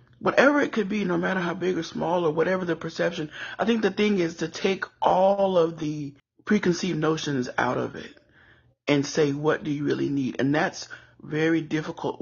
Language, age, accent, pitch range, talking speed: English, 30-49, American, 145-180 Hz, 195 wpm